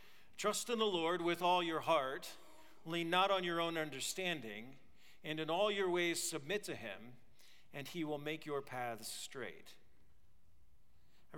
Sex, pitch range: male, 155-205 Hz